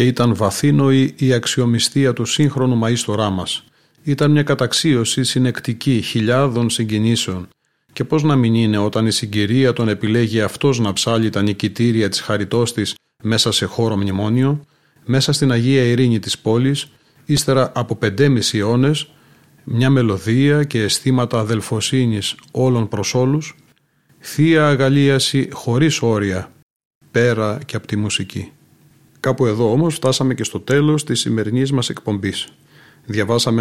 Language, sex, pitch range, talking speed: Greek, male, 110-140 Hz, 135 wpm